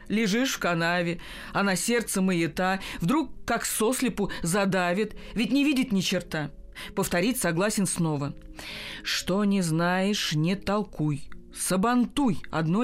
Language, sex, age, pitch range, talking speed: Russian, female, 40-59, 170-235 Hz, 120 wpm